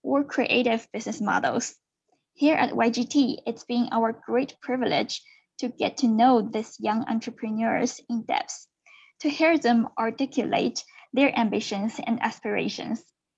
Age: 10-29